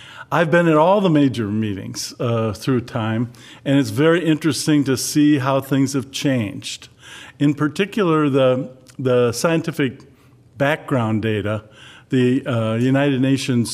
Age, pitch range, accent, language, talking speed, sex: 50-69, 120-140 Hz, American, English, 135 wpm, male